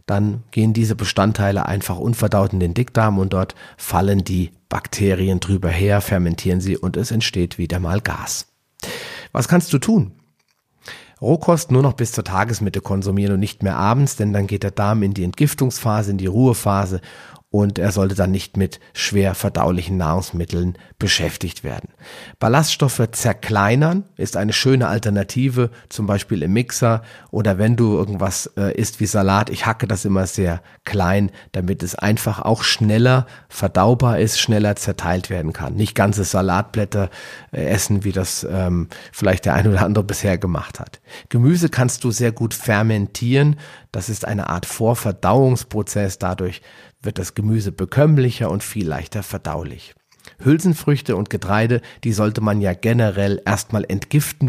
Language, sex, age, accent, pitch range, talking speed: German, male, 40-59, German, 95-115 Hz, 155 wpm